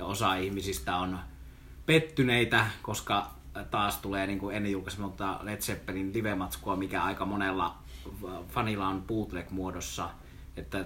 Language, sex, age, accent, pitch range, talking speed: Finnish, male, 30-49, native, 90-110 Hz, 115 wpm